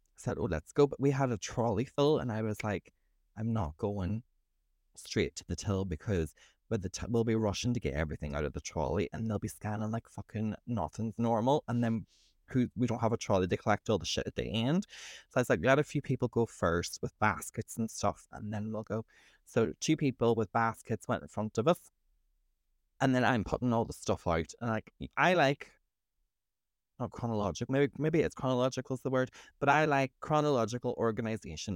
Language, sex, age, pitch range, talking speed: English, male, 20-39, 100-135 Hz, 215 wpm